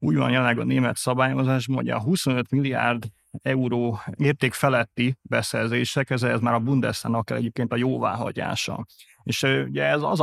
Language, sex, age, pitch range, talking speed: Hungarian, male, 30-49, 115-130 Hz, 145 wpm